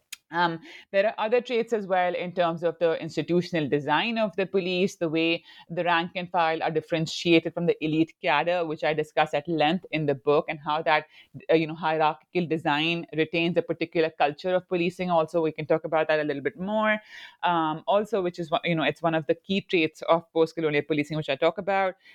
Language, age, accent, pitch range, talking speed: English, 30-49, Indian, 155-175 Hz, 210 wpm